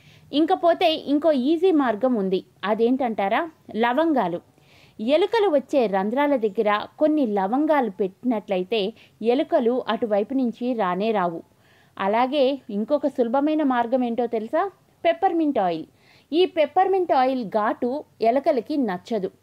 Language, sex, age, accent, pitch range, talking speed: Telugu, female, 20-39, native, 210-300 Hz, 100 wpm